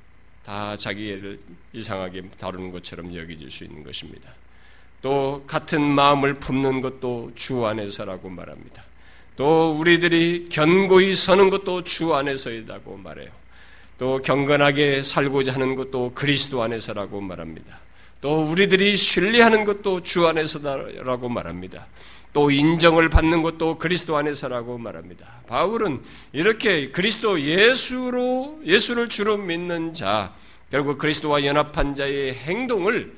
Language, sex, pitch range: Korean, male, 105-175 Hz